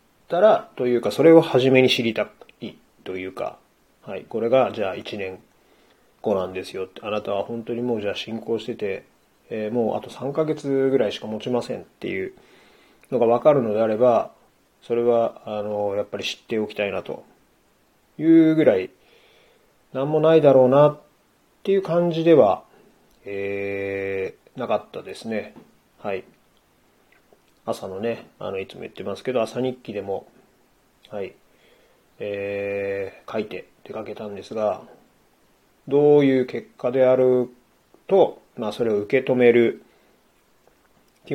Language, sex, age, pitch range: Japanese, male, 30-49, 105-135 Hz